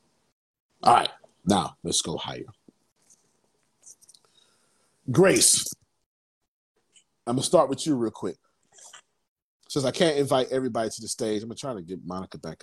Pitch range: 100-125 Hz